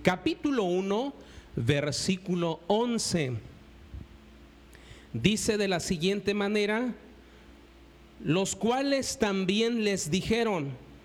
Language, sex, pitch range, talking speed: Spanish, male, 175-245 Hz, 75 wpm